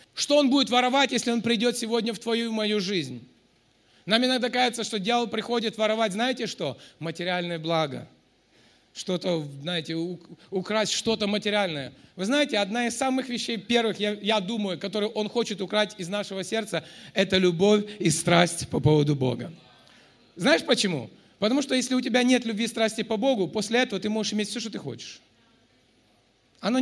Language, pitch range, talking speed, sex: Russian, 190-245 Hz, 170 wpm, male